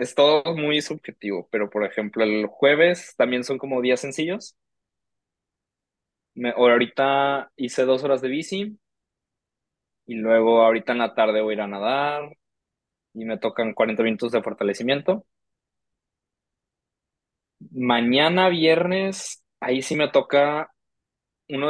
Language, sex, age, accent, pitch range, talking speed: Spanish, male, 20-39, Mexican, 120-145 Hz, 125 wpm